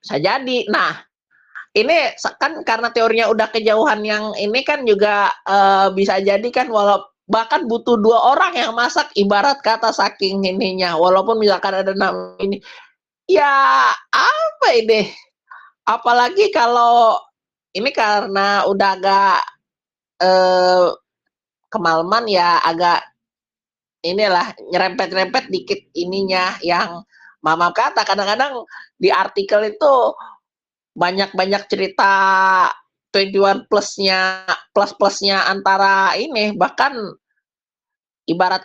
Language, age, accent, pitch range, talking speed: Indonesian, 20-39, native, 180-225 Hz, 100 wpm